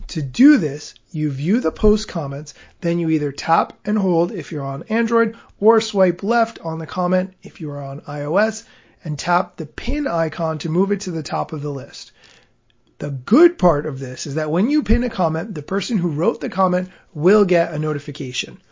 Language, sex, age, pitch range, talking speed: English, male, 30-49, 150-205 Hz, 205 wpm